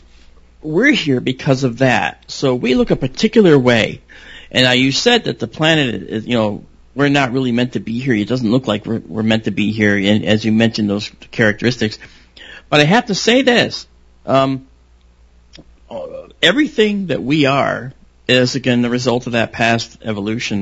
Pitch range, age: 105-140 Hz, 40-59